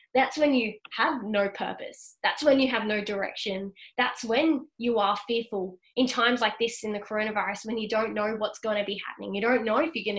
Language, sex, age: English, female, 20-39